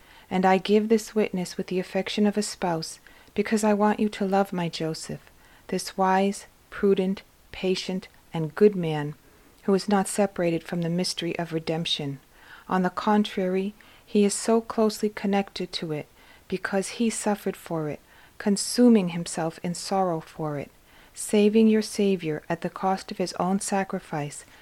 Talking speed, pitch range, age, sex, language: 160 wpm, 170-210 Hz, 40-59, female, English